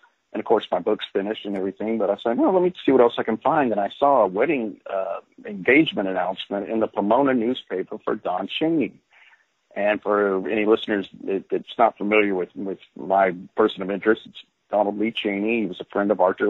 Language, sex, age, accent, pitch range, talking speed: English, male, 50-69, American, 95-125 Hz, 210 wpm